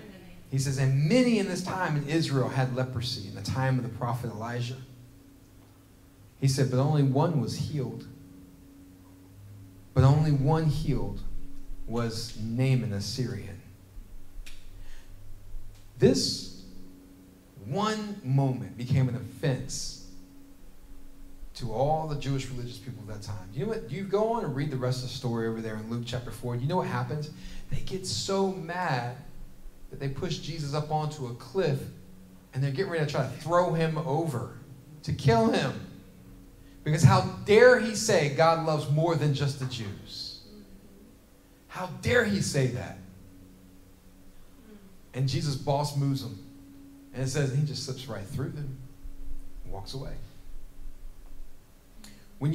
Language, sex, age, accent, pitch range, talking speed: English, male, 40-59, American, 95-140 Hz, 150 wpm